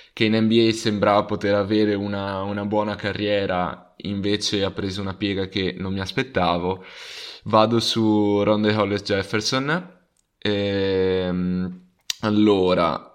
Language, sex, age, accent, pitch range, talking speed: Italian, male, 20-39, native, 100-110 Hz, 115 wpm